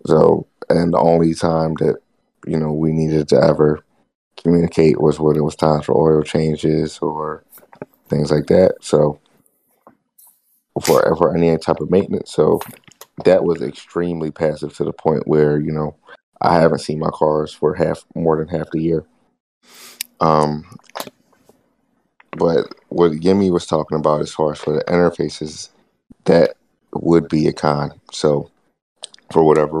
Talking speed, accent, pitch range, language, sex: 150 wpm, American, 75-80 Hz, English, male